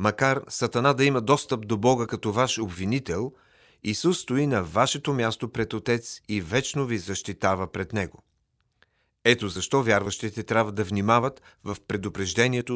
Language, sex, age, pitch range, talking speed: Bulgarian, male, 40-59, 100-135 Hz, 145 wpm